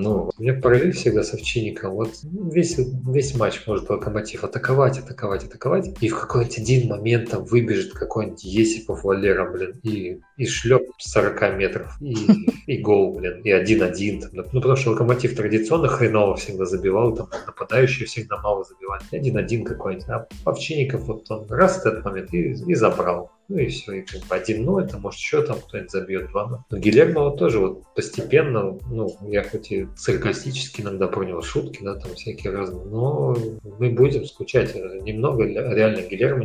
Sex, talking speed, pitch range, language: male, 175 wpm, 100-125 Hz, Russian